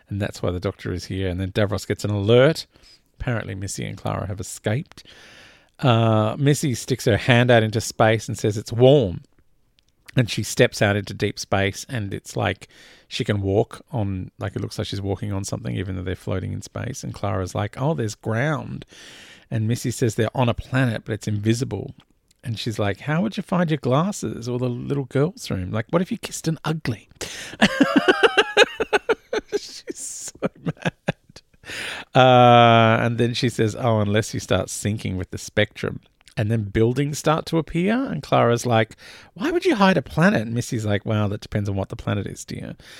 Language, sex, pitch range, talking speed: English, male, 100-140 Hz, 195 wpm